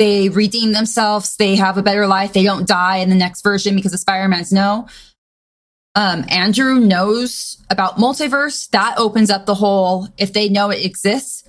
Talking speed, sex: 170 wpm, female